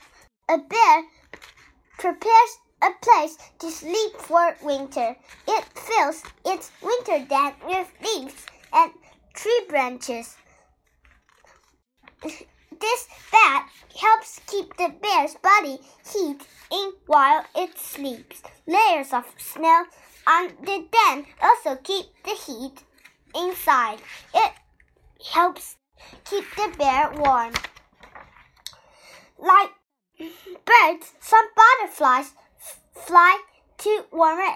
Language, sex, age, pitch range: Chinese, male, 10-29, 290-420 Hz